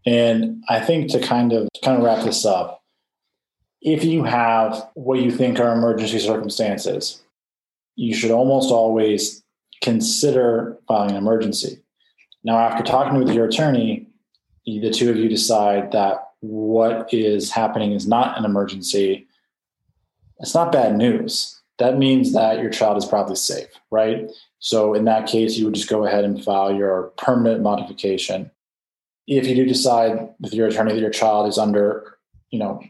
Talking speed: 160 wpm